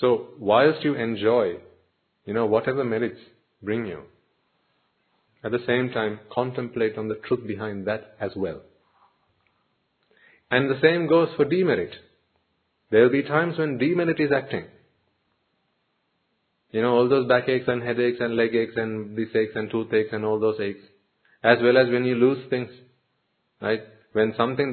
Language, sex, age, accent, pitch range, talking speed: English, male, 30-49, Indian, 110-135 Hz, 165 wpm